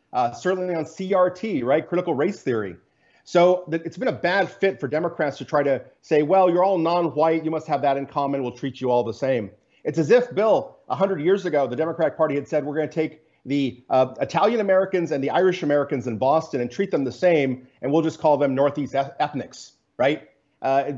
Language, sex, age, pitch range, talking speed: English, male, 40-59, 140-175 Hz, 220 wpm